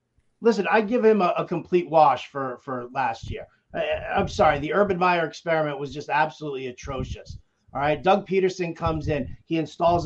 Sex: male